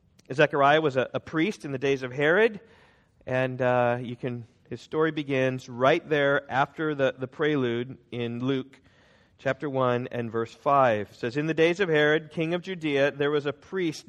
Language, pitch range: English, 125-155 Hz